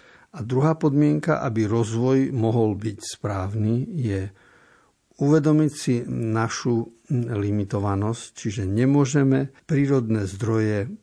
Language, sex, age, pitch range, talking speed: Slovak, male, 60-79, 110-130 Hz, 90 wpm